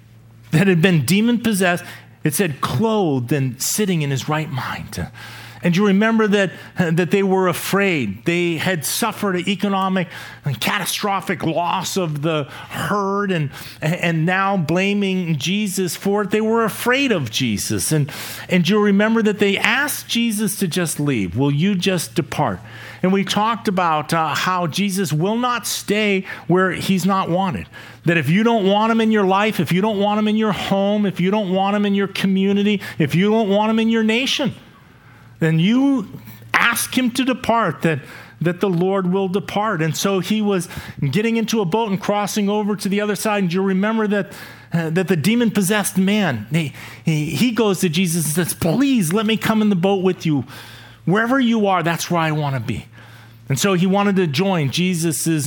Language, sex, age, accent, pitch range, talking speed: English, male, 40-59, American, 155-205 Hz, 190 wpm